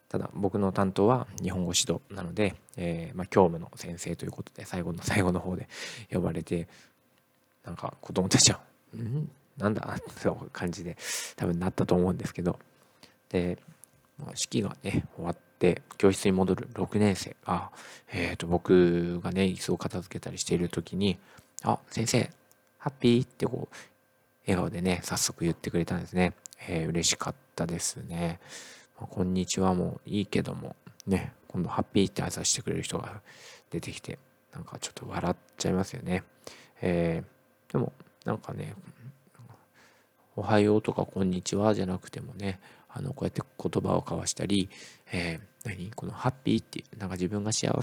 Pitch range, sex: 90-110 Hz, male